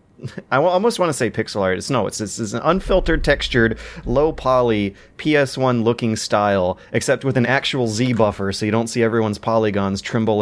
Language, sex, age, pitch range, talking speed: English, male, 30-49, 100-130 Hz, 160 wpm